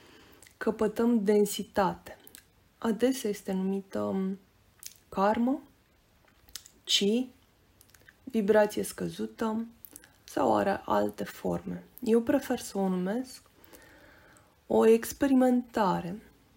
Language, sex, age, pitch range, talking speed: Romanian, female, 20-39, 190-230 Hz, 70 wpm